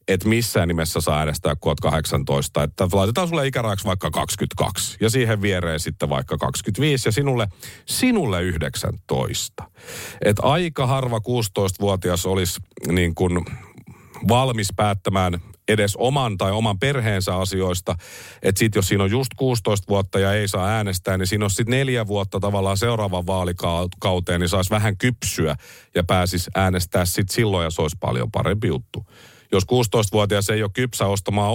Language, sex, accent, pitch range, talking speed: Finnish, male, native, 90-115 Hz, 145 wpm